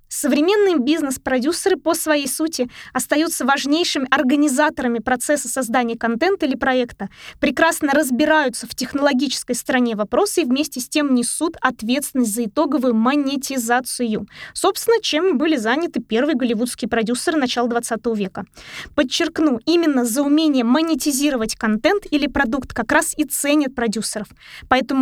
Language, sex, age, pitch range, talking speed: Russian, female, 20-39, 235-300 Hz, 125 wpm